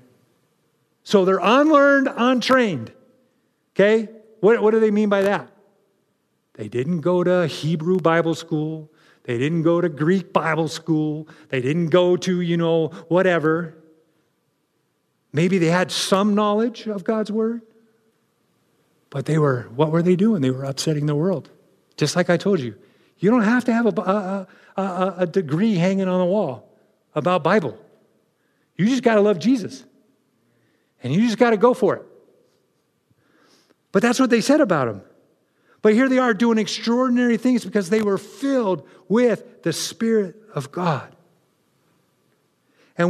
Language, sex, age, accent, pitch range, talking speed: English, male, 50-69, American, 175-235 Hz, 155 wpm